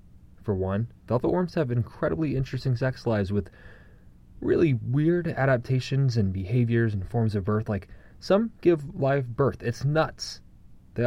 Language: English